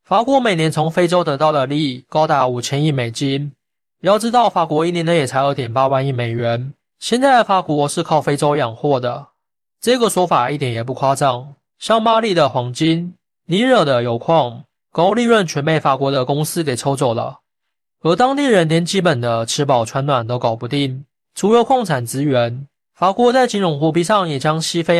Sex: male